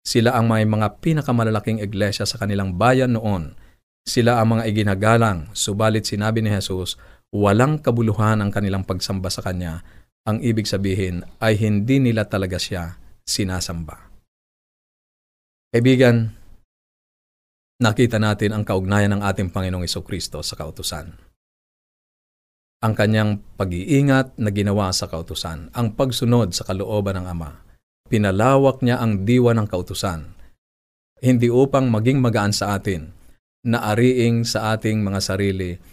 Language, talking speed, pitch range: Filipino, 125 wpm, 95-115 Hz